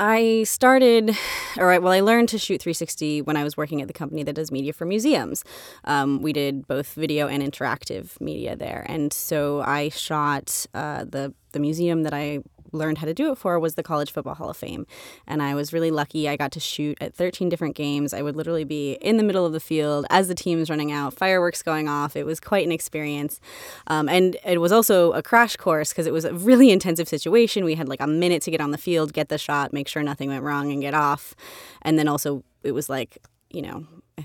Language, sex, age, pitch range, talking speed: English, female, 20-39, 145-185 Hz, 235 wpm